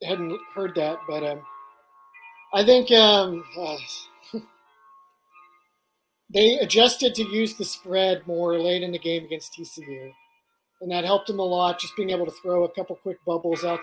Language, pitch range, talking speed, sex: English, 160-195 Hz, 165 wpm, male